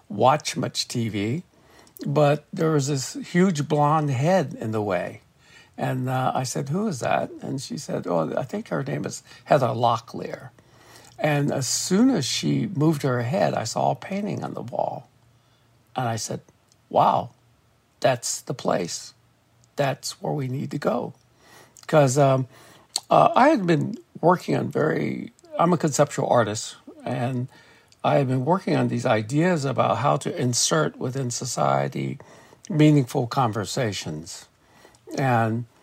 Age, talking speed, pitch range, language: 60-79, 150 wpm, 125-150 Hz, English